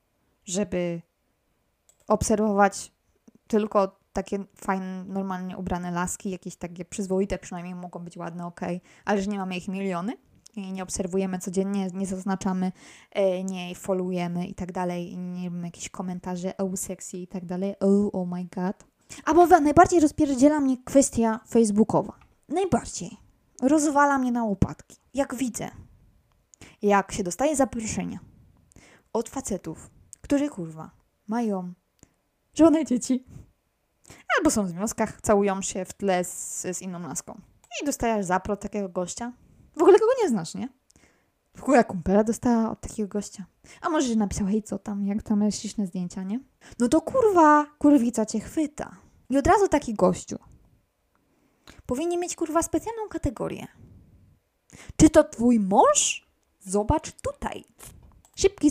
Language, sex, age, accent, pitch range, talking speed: Polish, female, 20-39, native, 185-260 Hz, 140 wpm